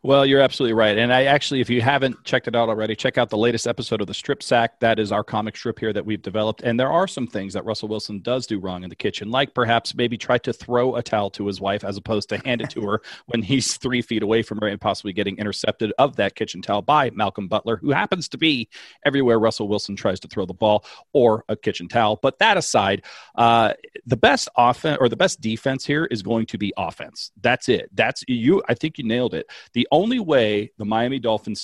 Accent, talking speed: American, 245 wpm